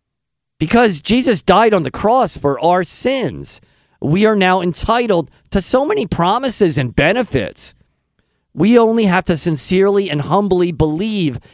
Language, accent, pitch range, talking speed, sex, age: English, American, 155-215 Hz, 140 wpm, male, 50-69